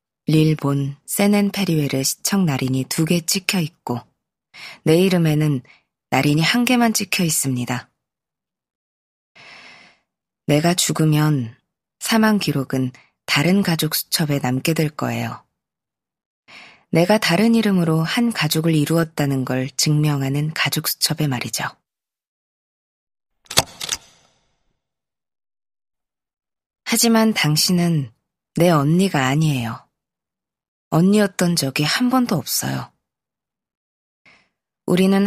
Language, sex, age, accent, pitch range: Korean, female, 20-39, native, 135-175 Hz